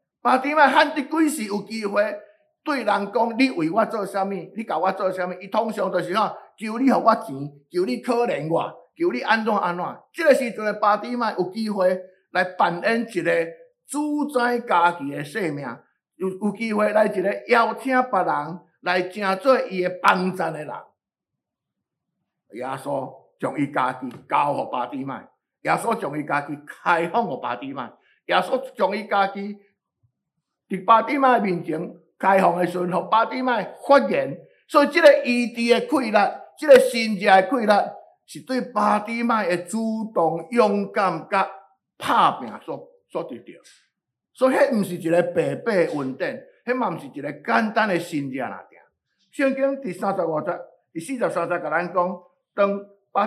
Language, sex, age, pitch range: Chinese, male, 50-69, 180-250 Hz